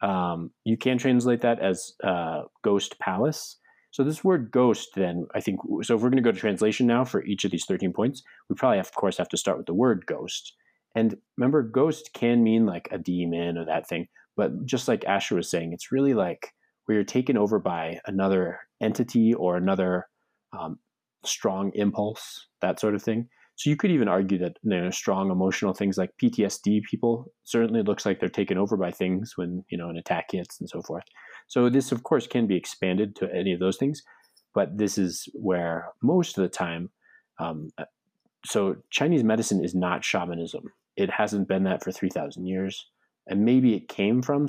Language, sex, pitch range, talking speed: English, male, 90-120 Hz, 200 wpm